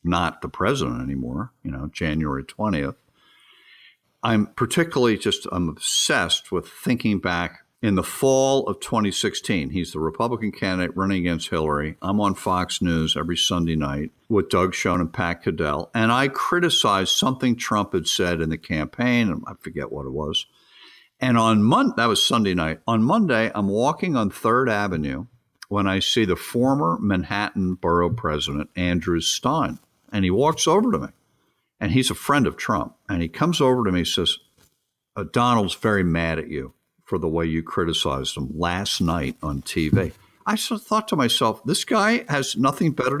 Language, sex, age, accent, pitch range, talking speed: English, male, 50-69, American, 85-130 Hz, 175 wpm